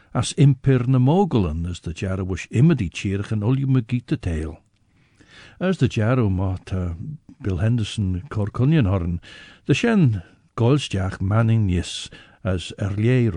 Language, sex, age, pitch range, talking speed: English, male, 60-79, 95-125 Hz, 115 wpm